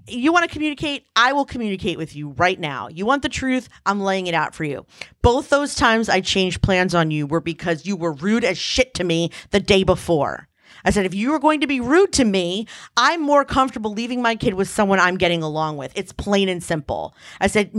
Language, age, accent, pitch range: English, 40-59, American, 180-245 Hz